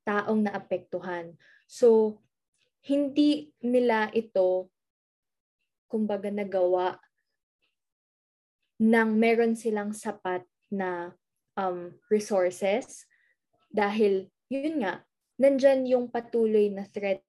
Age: 20-39